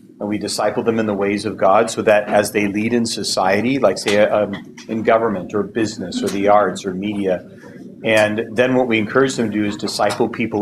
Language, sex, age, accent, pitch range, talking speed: English, male, 40-59, American, 105-120 Hz, 220 wpm